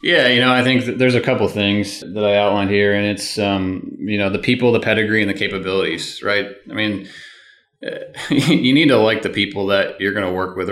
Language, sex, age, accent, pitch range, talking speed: English, male, 20-39, American, 95-110 Hz, 235 wpm